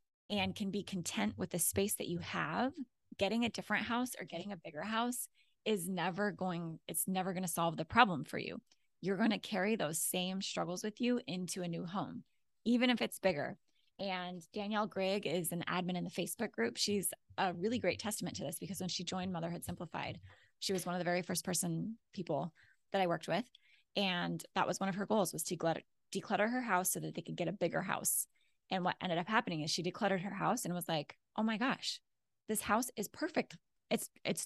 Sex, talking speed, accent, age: female, 220 wpm, American, 20-39